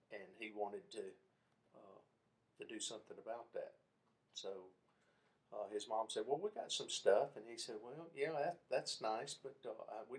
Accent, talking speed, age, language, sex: American, 185 wpm, 50-69, English, male